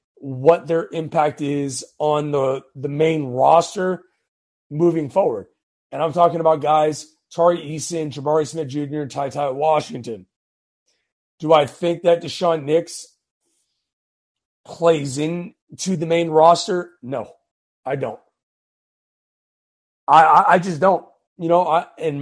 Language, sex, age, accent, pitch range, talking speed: English, male, 30-49, American, 145-170 Hz, 120 wpm